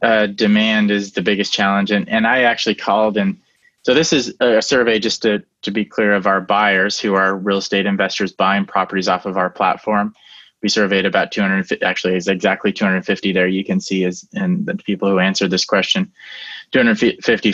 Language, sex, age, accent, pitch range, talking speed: English, male, 20-39, American, 100-120 Hz, 195 wpm